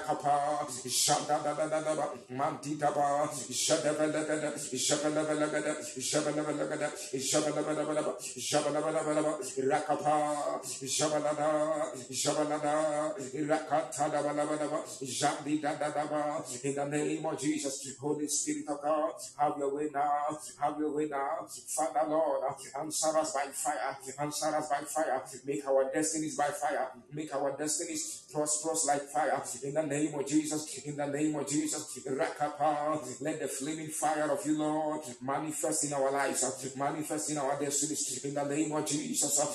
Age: 50-69